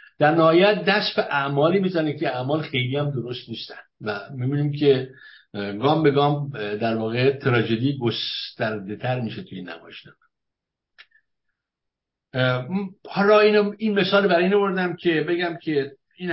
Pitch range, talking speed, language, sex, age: 115-160 Hz, 130 wpm, English, male, 60-79